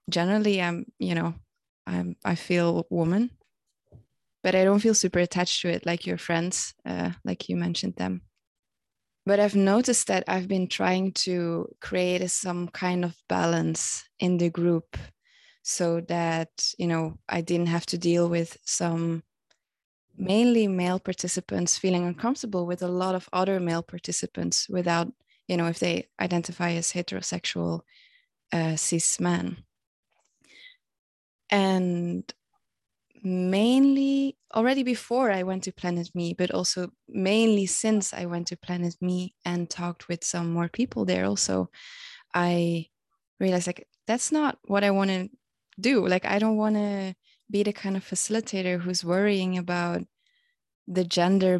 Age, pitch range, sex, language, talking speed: 20-39, 170-200 Hz, female, English, 145 wpm